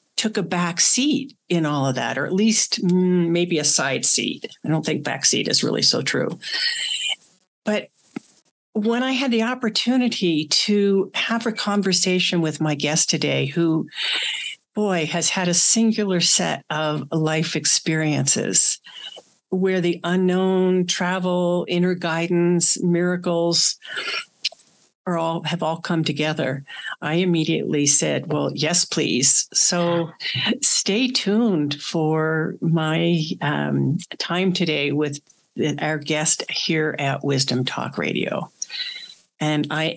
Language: English